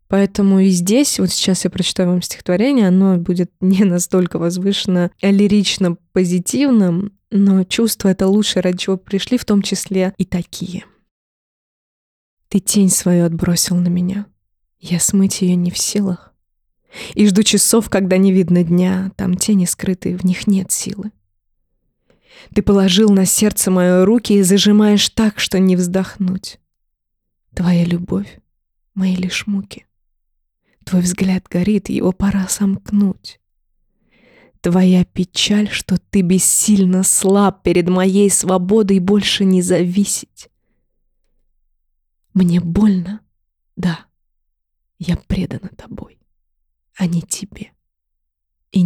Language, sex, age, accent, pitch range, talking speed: Russian, female, 20-39, native, 175-195 Hz, 125 wpm